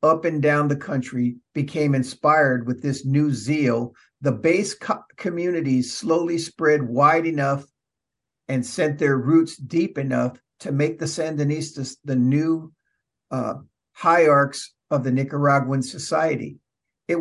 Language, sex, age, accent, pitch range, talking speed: English, male, 50-69, American, 135-165 Hz, 130 wpm